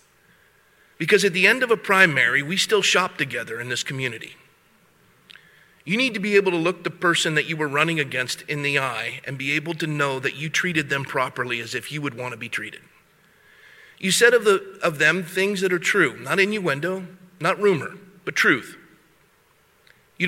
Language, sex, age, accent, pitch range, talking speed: English, male, 40-59, American, 145-195 Hz, 195 wpm